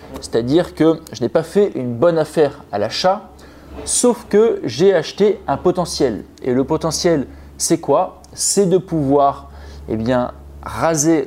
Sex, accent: male, French